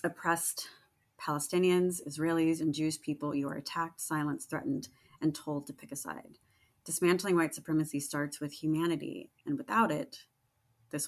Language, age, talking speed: English, 30-49, 145 wpm